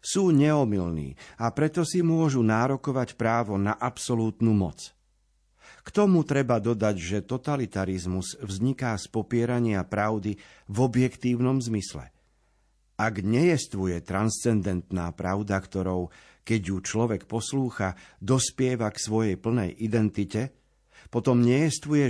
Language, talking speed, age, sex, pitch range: Slovak, 110 wpm, 50-69, male, 105-130 Hz